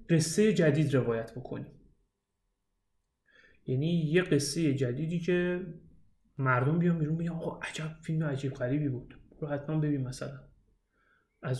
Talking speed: 125 wpm